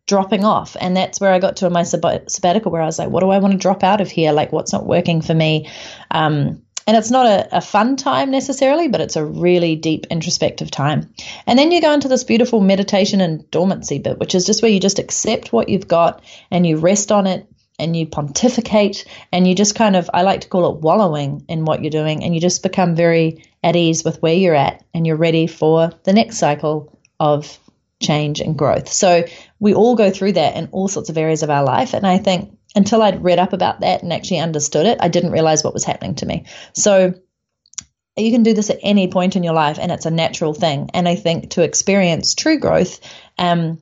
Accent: Australian